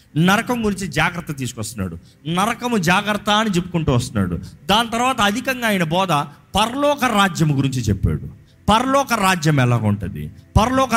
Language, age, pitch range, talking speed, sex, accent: Telugu, 30-49, 135-200 Hz, 120 wpm, male, native